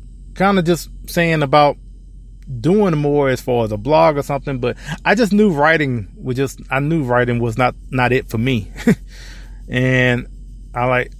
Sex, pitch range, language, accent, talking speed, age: male, 120-160 Hz, English, American, 175 wpm, 20-39